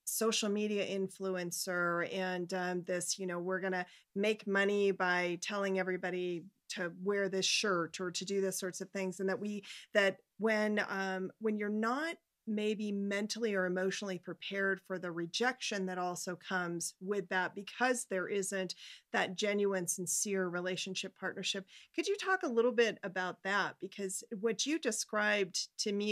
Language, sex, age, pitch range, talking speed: English, female, 40-59, 185-210 Hz, 160 wpm